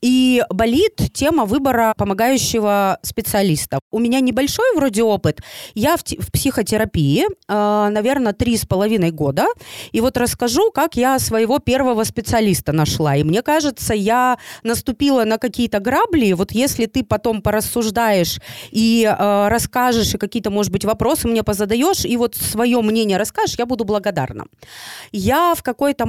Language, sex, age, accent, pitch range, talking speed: Russian, female, 30-49, native, 200-255 Hz, 140 wpm